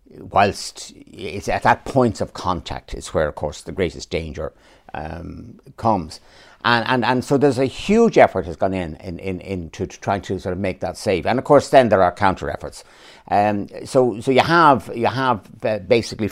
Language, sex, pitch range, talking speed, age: English, male, 95-130 Hz, 205 wpm, 60-79